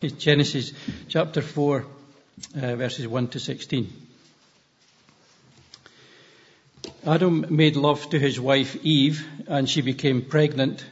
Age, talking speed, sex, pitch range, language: 60-79, 105 wpm, male, 135-165 Hz, English